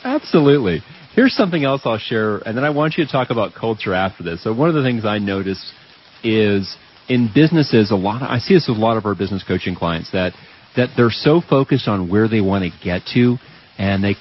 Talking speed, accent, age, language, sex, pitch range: 230 wpm, American, 40-59, English, male, 100-135 Hz